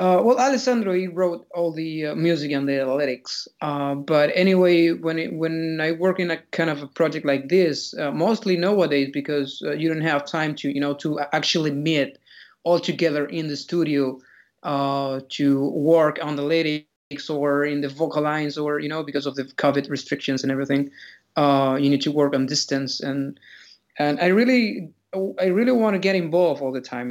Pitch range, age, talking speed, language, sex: 145-180 Hz, 30-49, 195 wpm, English, male